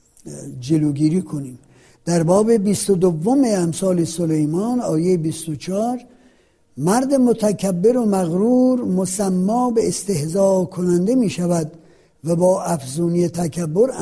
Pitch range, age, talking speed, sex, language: 160-205 Hz, 60-79, 105 wpm, male, Persian